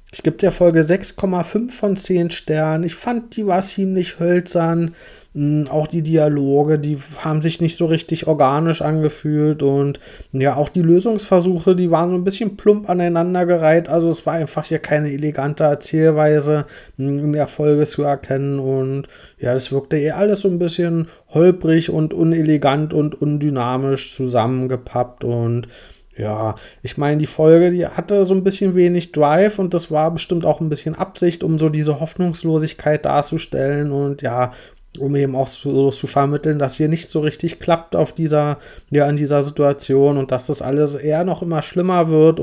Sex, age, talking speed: male, 30-49, 170 wpm